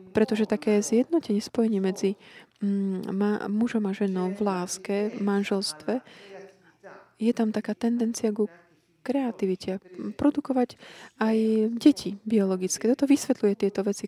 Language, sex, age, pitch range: Slovak, female, 20-39, 185-220 Hz